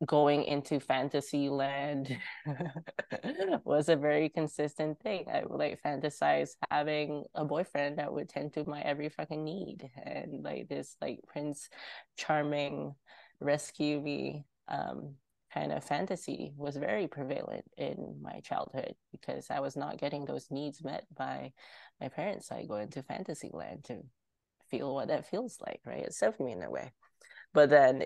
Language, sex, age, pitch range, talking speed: English, female, 20-39, 135-150 Hz, 155 wpm